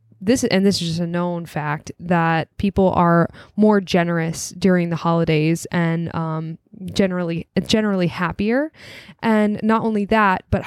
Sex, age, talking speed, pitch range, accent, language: female, 10-29, 150 wpm, 165-195 Hz, American, English